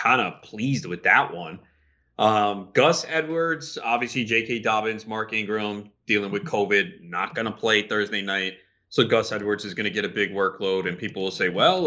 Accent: American